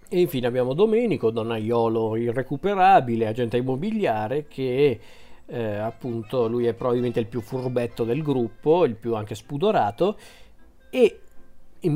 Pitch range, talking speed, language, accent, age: 120-145 Hz, 125 wpm, Italian, native, 40-59